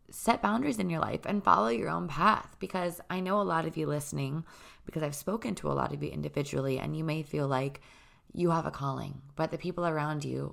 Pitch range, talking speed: 140-170 Hz, 235 wpm